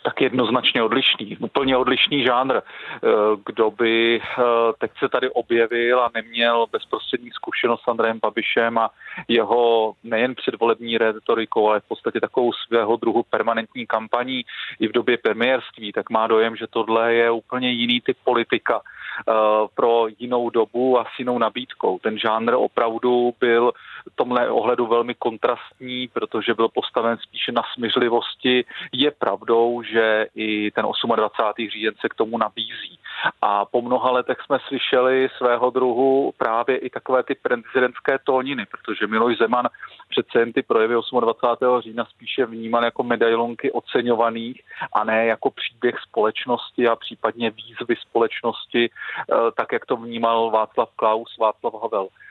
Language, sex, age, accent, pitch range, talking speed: Czech, male, 40-59, native, 115-125 Hz, 140 wpm